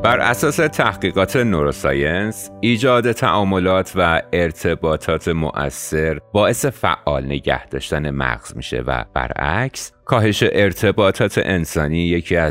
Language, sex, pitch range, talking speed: English, male, 70-100 Hz, 100 wpm